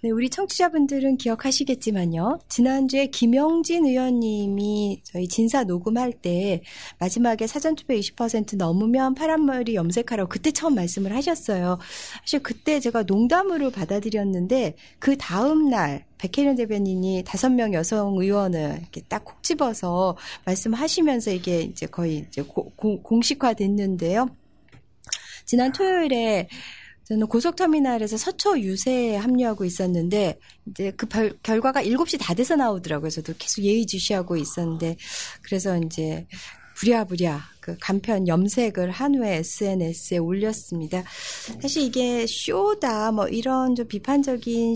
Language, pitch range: Korean, 190-265 Hz